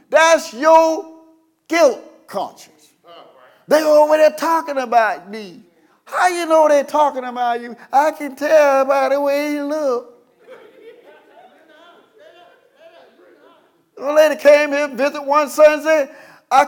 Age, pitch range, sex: 50-69, 275-390 Hz, male